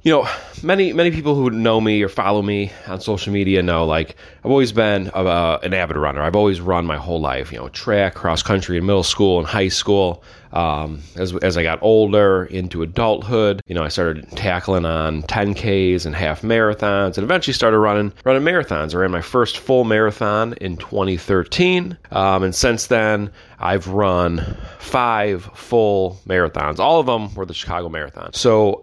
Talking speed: 185 wpm